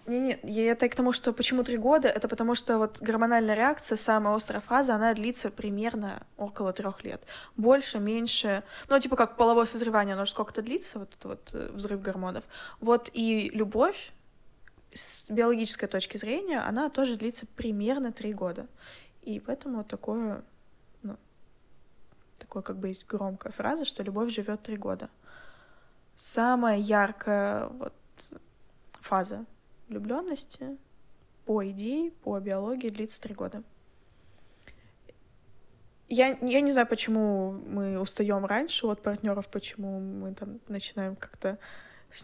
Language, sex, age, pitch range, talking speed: Russian, female, 20-39, 200-245 Hz, 140 wpm